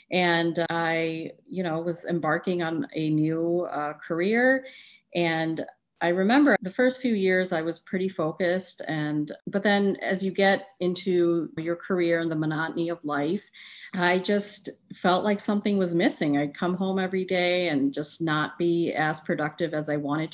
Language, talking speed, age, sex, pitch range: English, 170 wpm, 40-59, female, 160-190 Hz